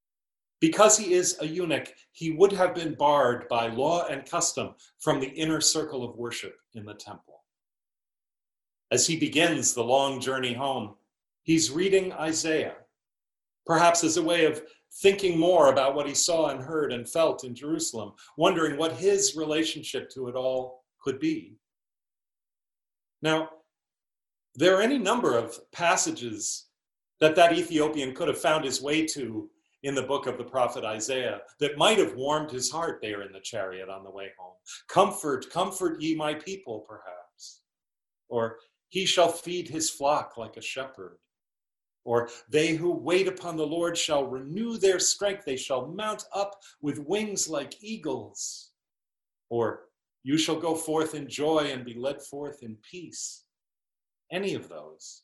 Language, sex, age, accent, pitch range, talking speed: English, male, 40-59, American, 130-175 Hz, 160 wpm